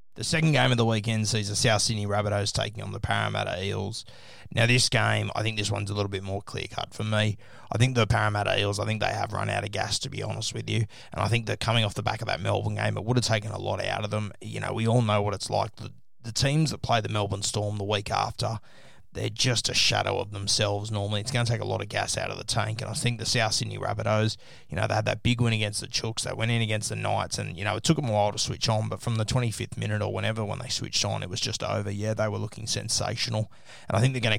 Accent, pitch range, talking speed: Australian, 105-120 Hz, 290 wpm